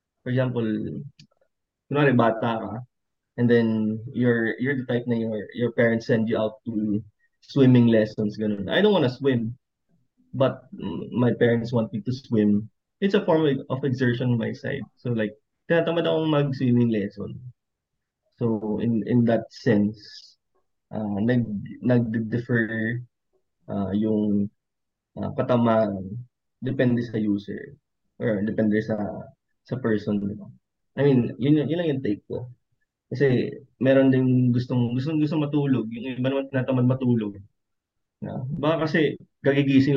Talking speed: 140 wpm